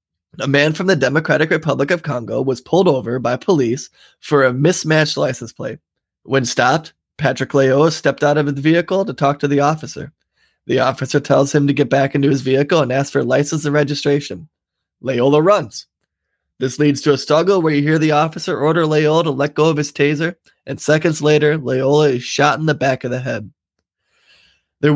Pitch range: 130-150 Hz